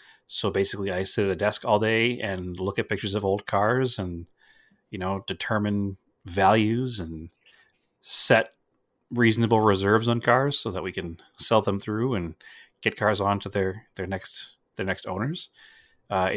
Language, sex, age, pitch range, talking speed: English, male, 30-49, 95-115 Hz, 165 wpm